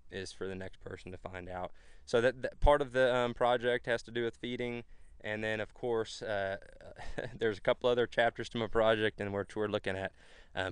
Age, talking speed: 20-39, 225 wpm